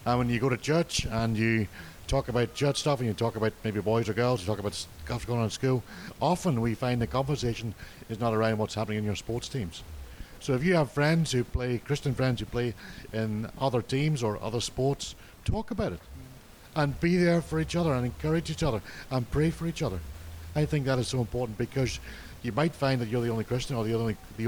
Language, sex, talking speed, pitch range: English, male, 235 wpm, 110-130 Hz